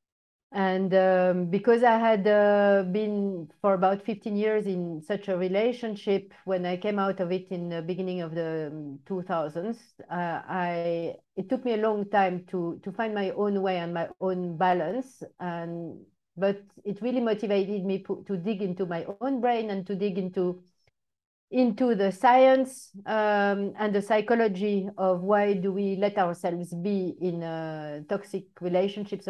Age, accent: 40-59, French